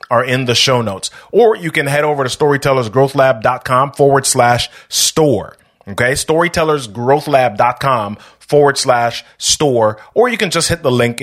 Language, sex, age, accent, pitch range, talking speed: English, male, 30-49, American, 115-155 Hz, 165 wpm